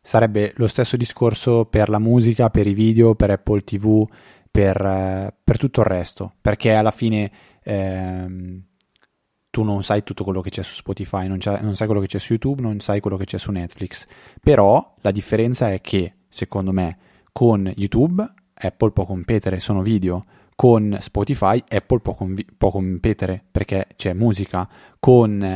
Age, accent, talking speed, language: 20-39, native, 165 wpm, Italian